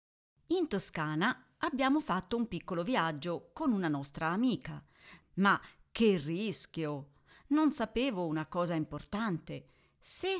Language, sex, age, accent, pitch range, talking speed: Italian, female, 40-59, native, 160-225 Hz, 115 wpm